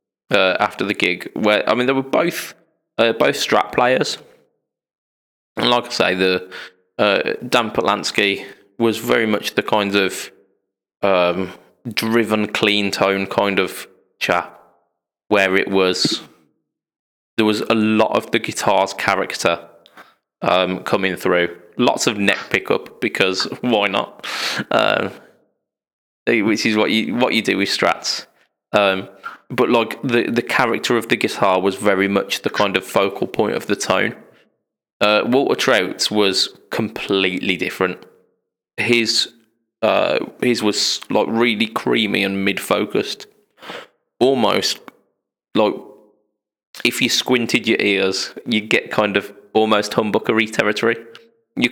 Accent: British